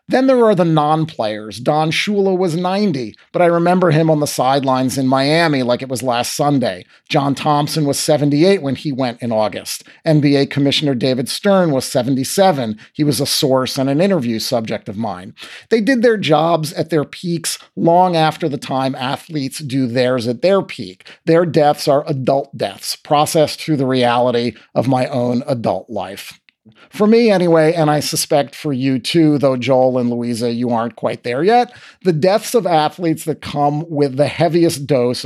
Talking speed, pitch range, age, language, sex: 180 wpm, 130-170 Hz, 40-59, English, male